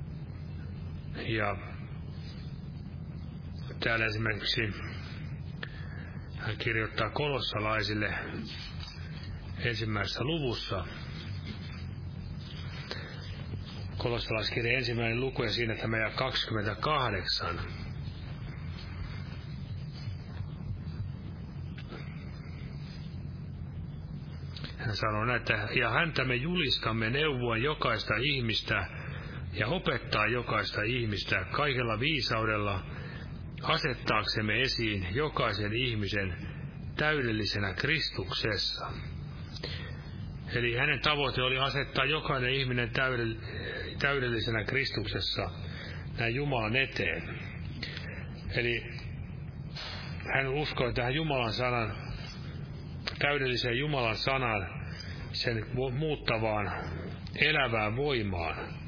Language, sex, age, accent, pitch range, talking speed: Finnish, male, 30-49, native, 100-130 Hz, 65 wpm